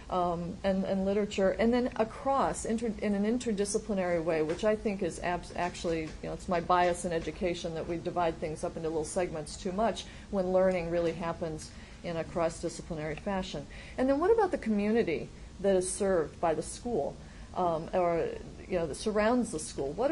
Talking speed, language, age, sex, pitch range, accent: 190 wpm, English, 40-59, female, 175-225 Hz, American